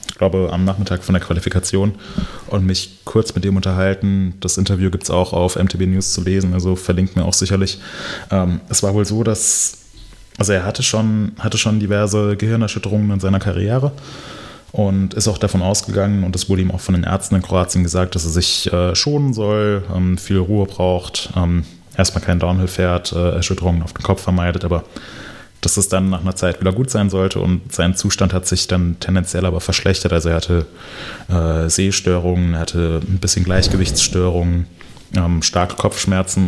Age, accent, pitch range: 20-39, German, 90-100 Hz